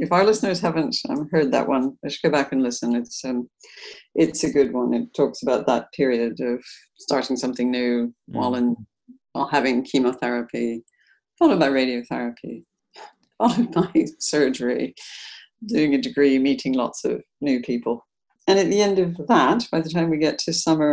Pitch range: 140-215 Hz